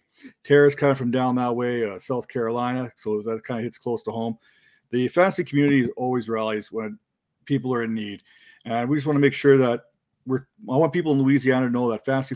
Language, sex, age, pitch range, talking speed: English, male, 40-59, 120-140 Hz, 225 wpm